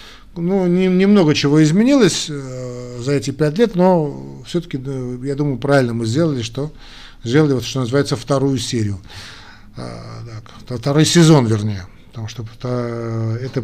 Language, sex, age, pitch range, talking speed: Russian, male, 50-69, 115-150 Hz, 125 wpm